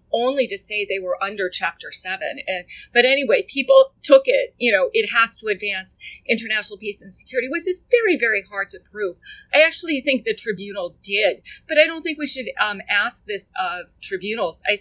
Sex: female